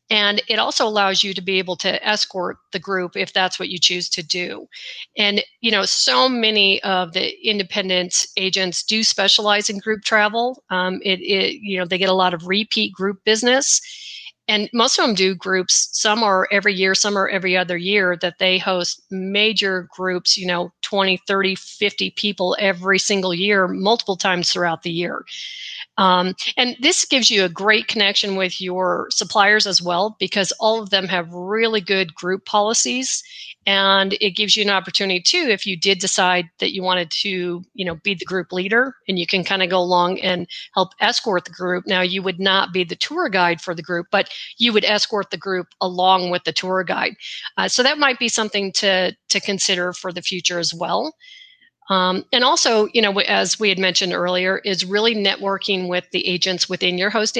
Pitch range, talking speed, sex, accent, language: 185-215 Hz, 200 wpm, female, American, English